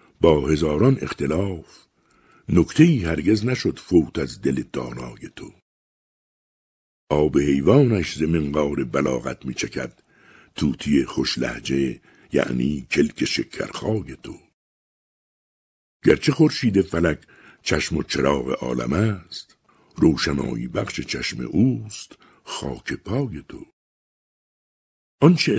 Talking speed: 95 wpm